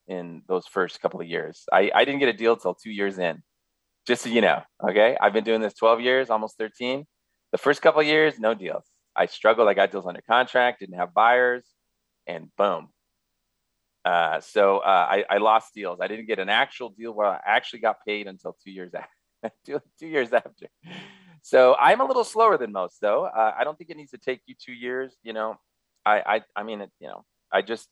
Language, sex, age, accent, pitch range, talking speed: English, male, 30-49, American, 85-135 Hz, 225 wpm